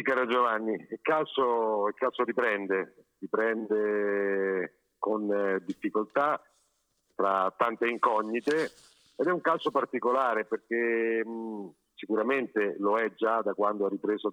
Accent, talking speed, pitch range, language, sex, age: native, 110 wpm, 100-120 Hz, Italian, male, 50-69